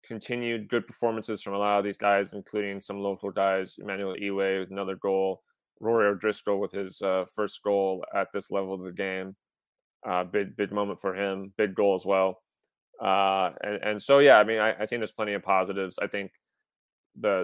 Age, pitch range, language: 20-39, 95-115 Hz, English